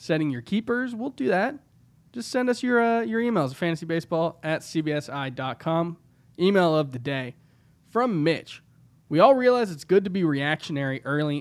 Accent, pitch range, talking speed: American, 135-170 Hz, 165 wpm